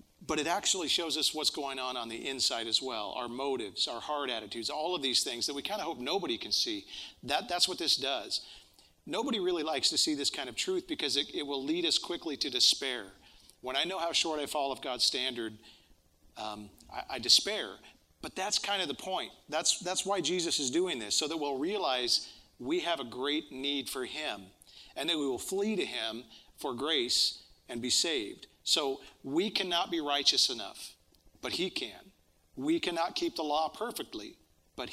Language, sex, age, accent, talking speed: English, male, 40-59, American, 205 wpm